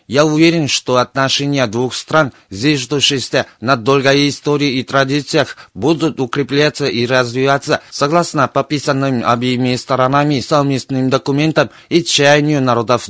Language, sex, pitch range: Russian, male, 130-150 Hz